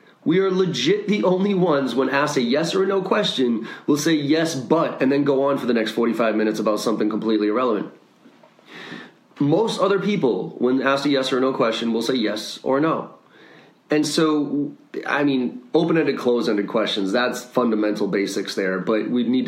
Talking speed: 180 wpm